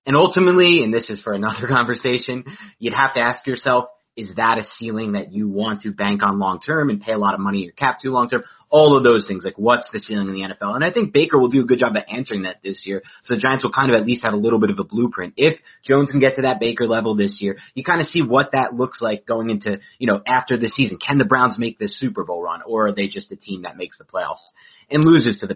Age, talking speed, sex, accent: 30-49, 285 wpm, male, American